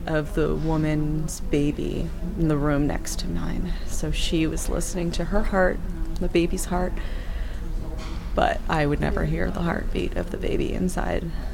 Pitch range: 160-185 Hz